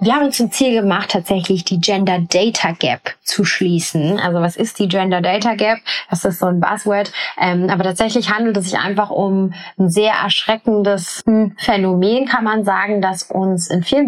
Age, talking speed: 20-39, 170 wpm